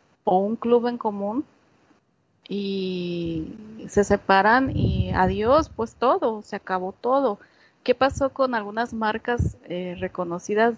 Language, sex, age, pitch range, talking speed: Spanish, female, 30-49, 185-240 Hz, 120 wpm